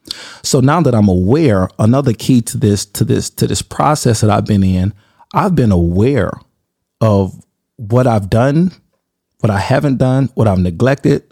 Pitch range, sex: 105-125 Hz, male